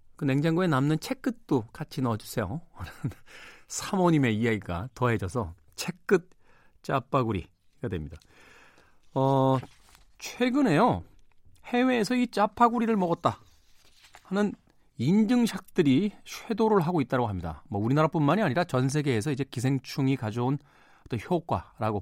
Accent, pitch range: native, 110-180 Hz